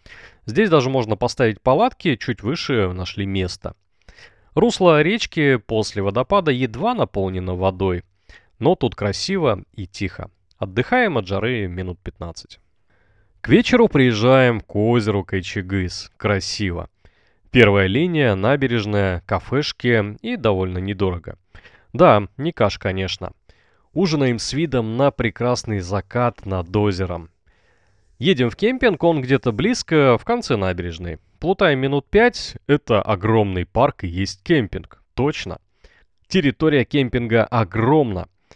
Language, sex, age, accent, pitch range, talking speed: Russian, male, 20-39, native, 95-140 Hz, 115 wpm